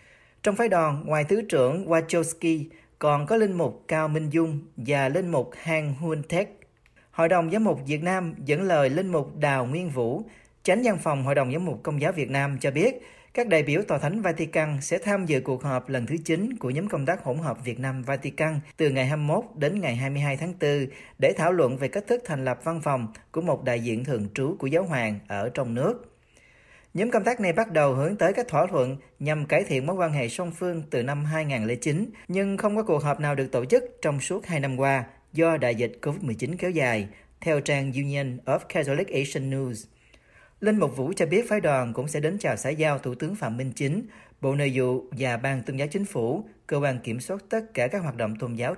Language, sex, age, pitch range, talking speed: Vietnamese, male, 40-59, 135-175 Hz, 230 wpm